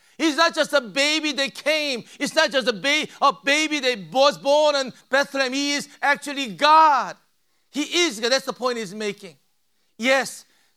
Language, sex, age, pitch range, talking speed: English, male, 50-69, 220-275 Hz, 175 wpm